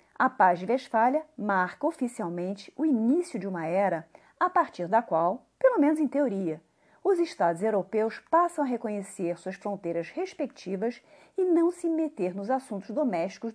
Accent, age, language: Brazilian, 40-59, Portuguese